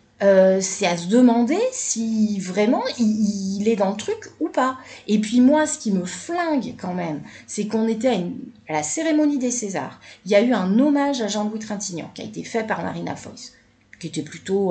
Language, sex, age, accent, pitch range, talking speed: French, female, 30-49, French, 190-260 Hz, 215 wpm